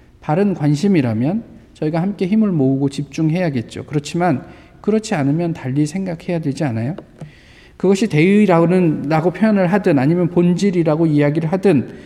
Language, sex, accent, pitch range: Korean, male, native, 150-205 Hz